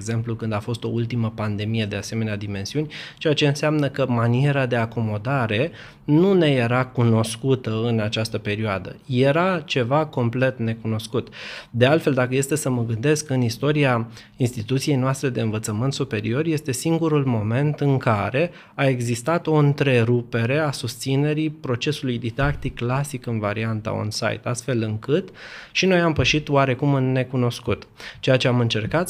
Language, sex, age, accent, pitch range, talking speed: Romanian, male, 20-39, native, 115-145 Hz, 150 wpm